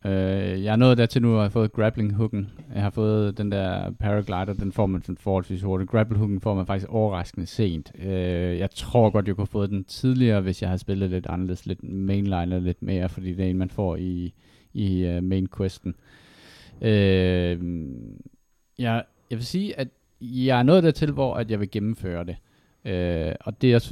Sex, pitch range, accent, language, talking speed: male, 90-110 Hz, native, Danish, 180 wpm